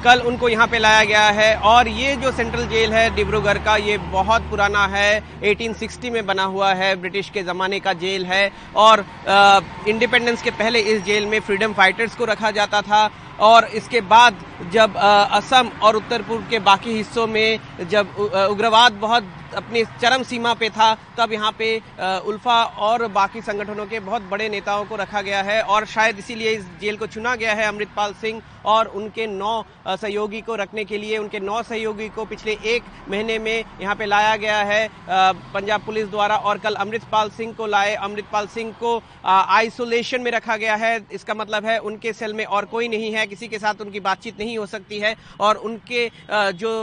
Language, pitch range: Hindi, 205-225 Hz